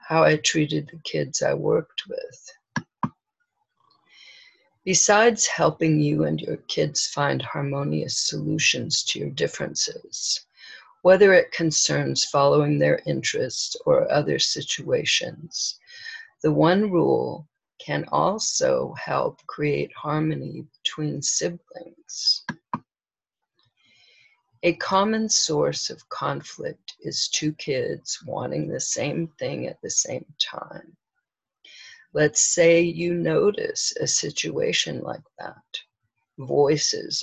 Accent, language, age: American, English, 50-69